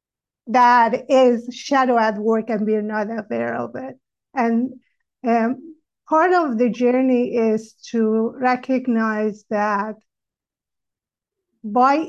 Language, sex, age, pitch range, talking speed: English, female, 50-69, 220-255 Hz, 110 wpm